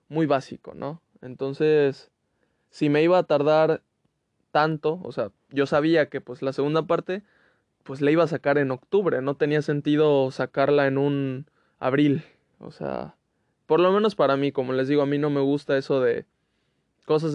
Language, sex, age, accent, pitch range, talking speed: Spanish, male, 20-39, Mexican, 135-155 Hz, 175 wpm